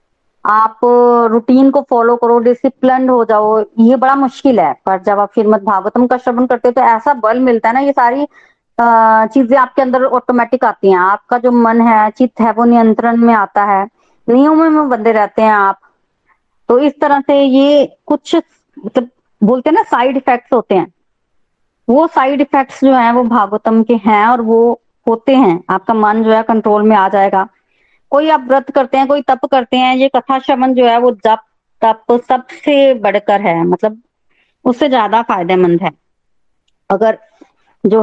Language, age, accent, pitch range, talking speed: Hindi, 20-39, native, 215-260 Hz, 185 wpm